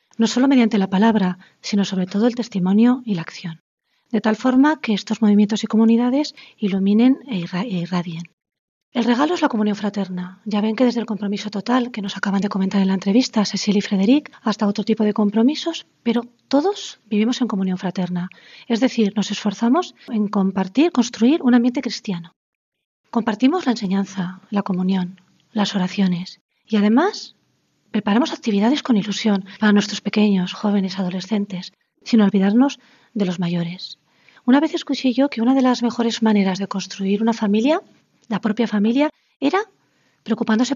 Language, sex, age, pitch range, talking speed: Spanish, female, 40-59, 195-240 Hz, 165 wpm